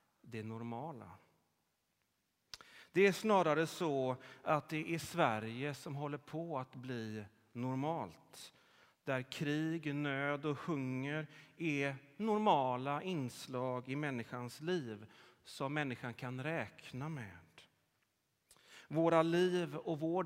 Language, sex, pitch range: Swedish, male, 120-155 Hz